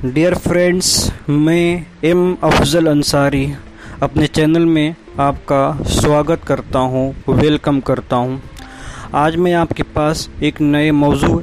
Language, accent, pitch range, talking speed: Hindi, native, 135-165 Hz, 120 wpm